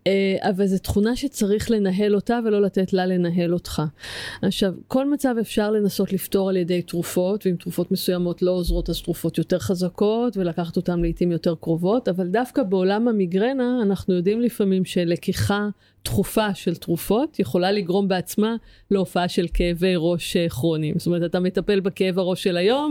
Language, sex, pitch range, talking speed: Hebrew, female, 180-210 Hz, 160 wpm